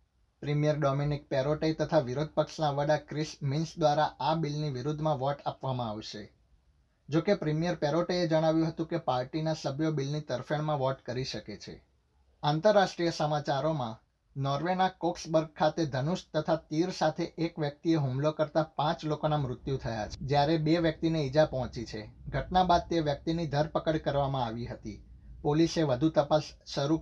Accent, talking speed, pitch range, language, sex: native, 145 wpm, 130-160 Hz, Gujarati, male